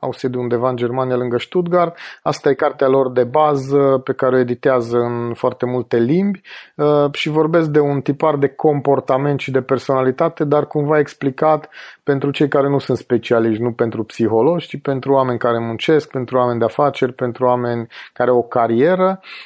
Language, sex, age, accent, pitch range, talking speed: Romanian, male, 30-49, native, 120-145 Hz, 180 wpm